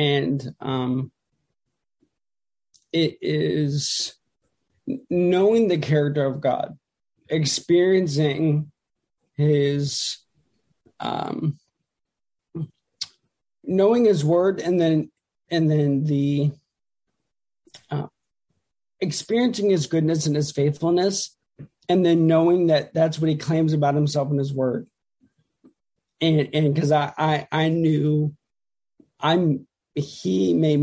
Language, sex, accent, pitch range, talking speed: English, male, American, 140-155 Hz, 95 wpm